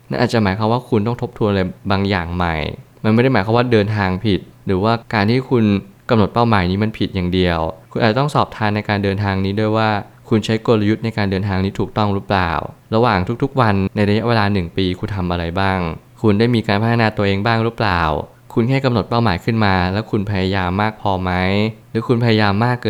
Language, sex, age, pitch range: Thai, male, 20-39, 95-115 Hz